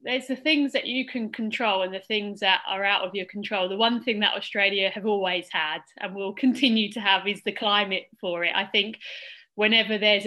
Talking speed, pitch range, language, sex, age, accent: 220 wpm, 195-230 Hz, English, female, 20-39, British